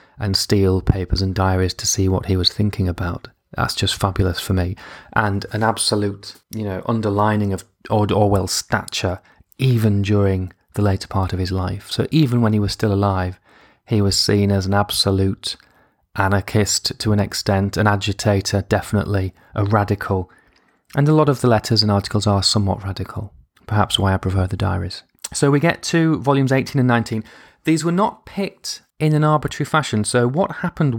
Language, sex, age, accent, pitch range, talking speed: English, male, 30-49, British, 100-120 Hz, 180 wpm